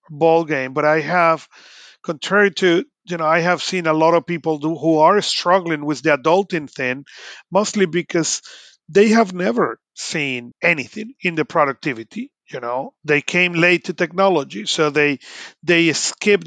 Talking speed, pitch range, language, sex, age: 165 wpm, 150-180 Hz, English, male, 40-59